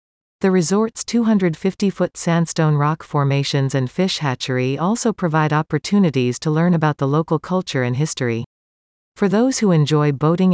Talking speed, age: 140 wpm, 40-59